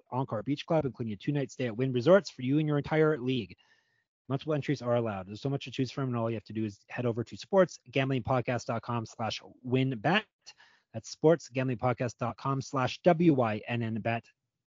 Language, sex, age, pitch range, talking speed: English, male, 30-49, 120-150 Hz, 175 wpm